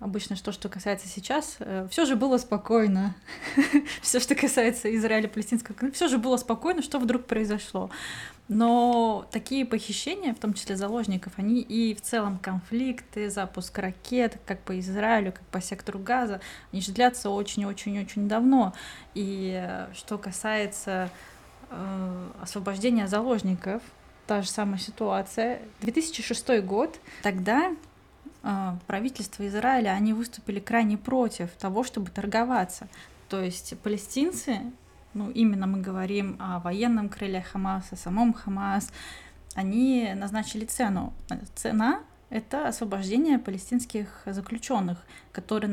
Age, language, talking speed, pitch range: 20-39, Russian, 120 wpm, 195-240 Hz